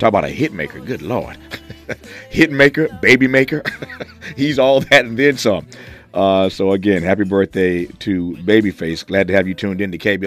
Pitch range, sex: 85-105 Hz, male